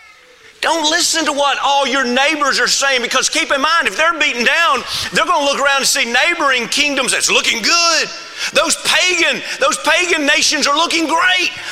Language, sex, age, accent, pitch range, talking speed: English, male, 40-59, American, 260-340 Hz, 185 wpm